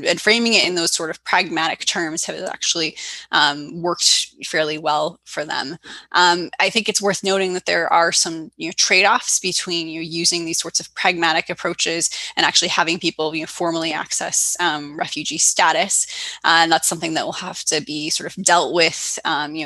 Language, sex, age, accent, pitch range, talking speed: English, female, 10-29, American, 160-190 Hz, 200 wpm